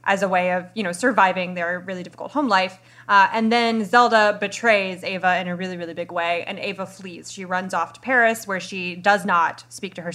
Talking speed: 230 wpm